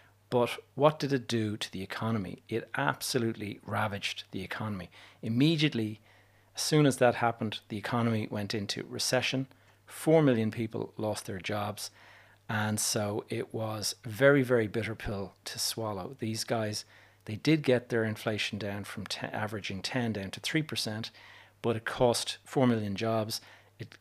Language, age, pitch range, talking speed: English, 40-59, 105-125 Hz, 155 wpm